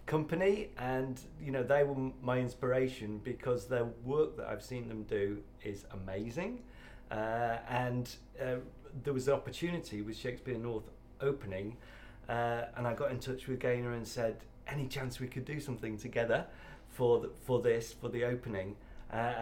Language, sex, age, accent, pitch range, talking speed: English, male, 30-49, British, 115-135 Hz, 170 wpm